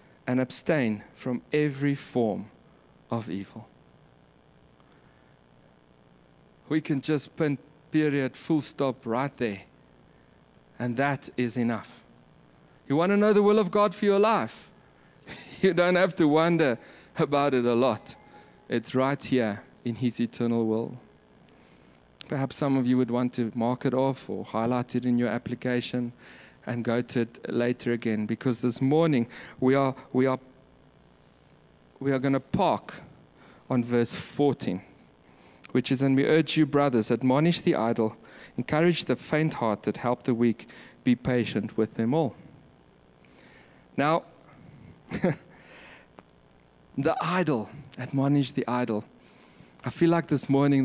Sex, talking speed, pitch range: male, 135 wpm, 110-140 Hz